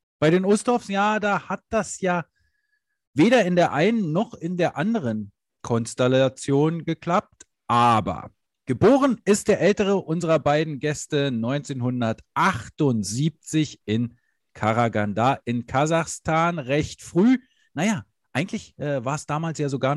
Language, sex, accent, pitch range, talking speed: English, male, German, 130-190 Hz, 120 wpm